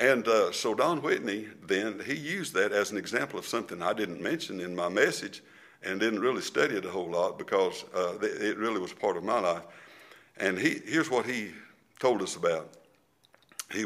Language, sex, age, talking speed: English, male, 60-79, 195 wpm